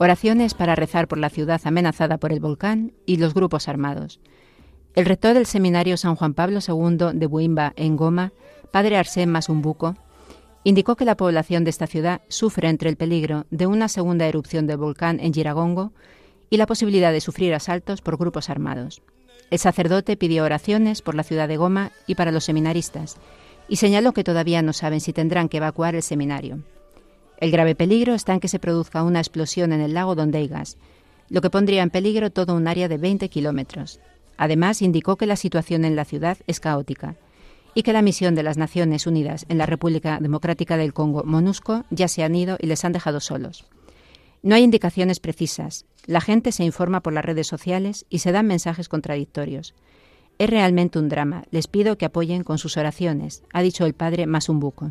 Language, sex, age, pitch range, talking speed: Spanish, female, 40-59, 155-185 Hz, 190 wpm